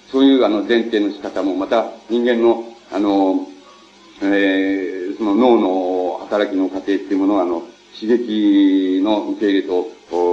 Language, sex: Japanese, male